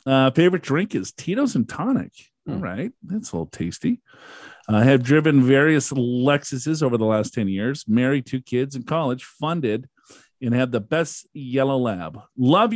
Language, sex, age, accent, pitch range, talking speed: English, male, 40-59, American, 115-145 Hz, 170 wpm